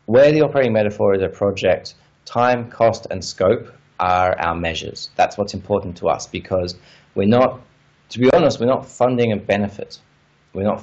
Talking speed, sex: 175 wpm, male